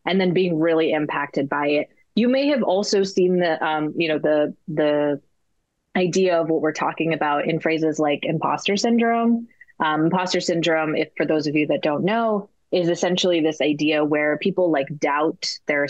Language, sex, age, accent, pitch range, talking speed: English, female, 20-39, American, 150-180 Hz, 185 wpm